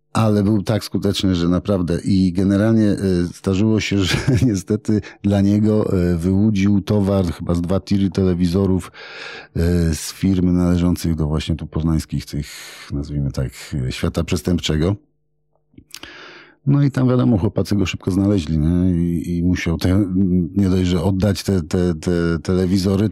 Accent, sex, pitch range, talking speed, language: native, male, 90-110 Hz, 130 wpm, Polish